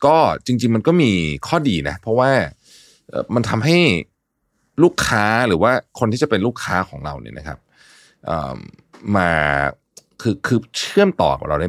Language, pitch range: Thai, 80-120 Hz